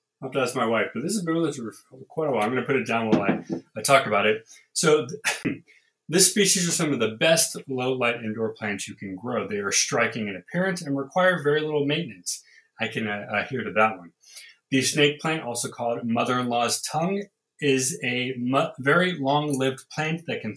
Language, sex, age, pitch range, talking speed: English, male, 30-49, 115-160 Hz, 215 wpm